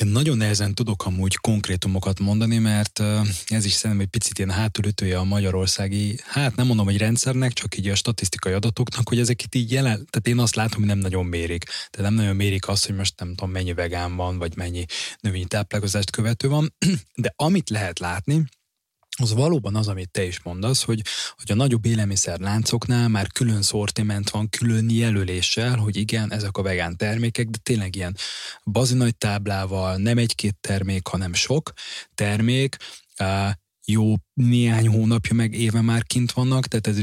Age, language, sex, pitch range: 20-39, Hungarian, male, 95-115 Hz